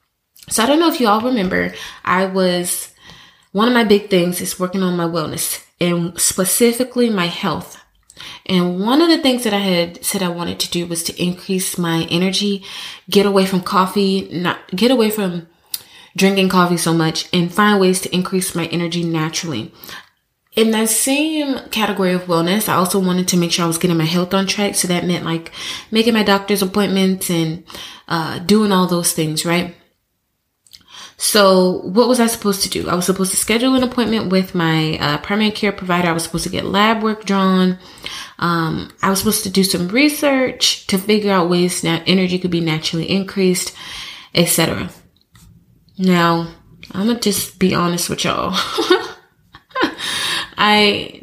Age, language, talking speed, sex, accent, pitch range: 20-39, English, 180 wpm, female, American, 170-205 Hz